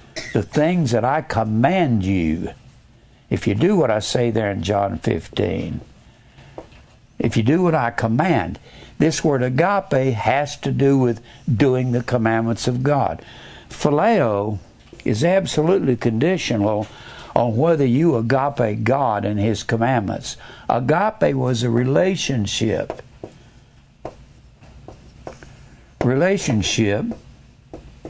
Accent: American